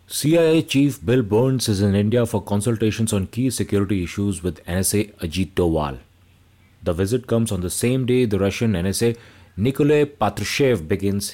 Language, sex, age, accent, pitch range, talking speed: English, male, 30-49, Indian, 95-120 Hz, 160 wpm